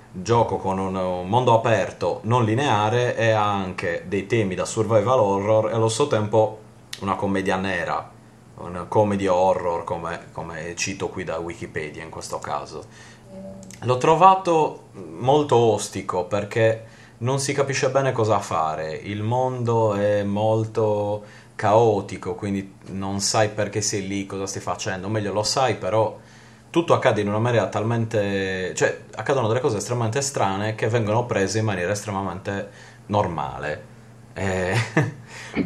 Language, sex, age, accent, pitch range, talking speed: Italian, male, 30-49, native, 100-115 Hz, 140 wpm